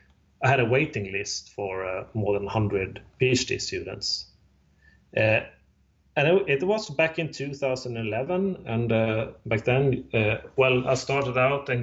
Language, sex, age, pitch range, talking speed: English, male, 30-49, 105-135 Hz, 150 wpm